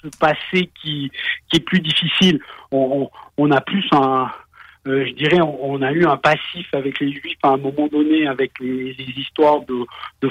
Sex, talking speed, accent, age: male, 200 wpm, French, 50-69